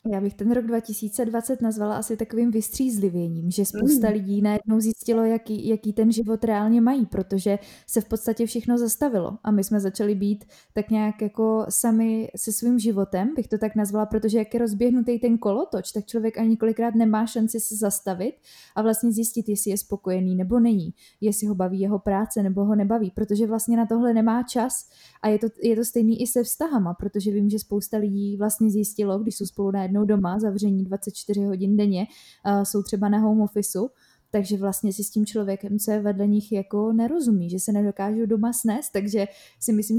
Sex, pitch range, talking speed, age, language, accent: female, 205-230 Hz, 190 wpm, 20-39, Czech, native